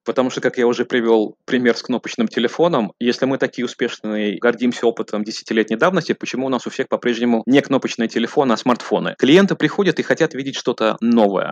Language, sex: Russian, male